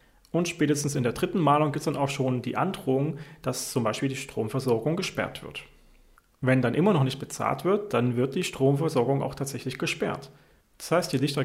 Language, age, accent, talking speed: German, 30-49, German, 200 wpm